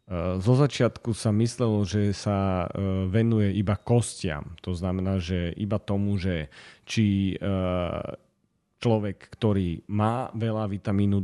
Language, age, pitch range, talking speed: Slovak, 30-49, 95-110 Hz, 105 wpm